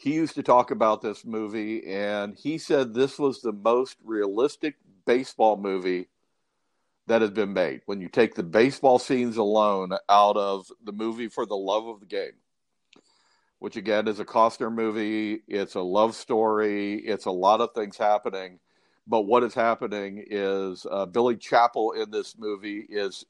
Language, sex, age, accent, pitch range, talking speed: English, male, 50-69, American, 100-125 Hz, 170 wpm